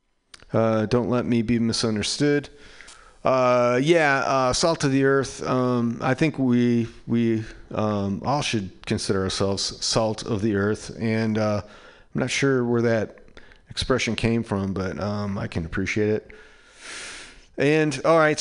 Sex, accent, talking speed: male, American, 150 wpm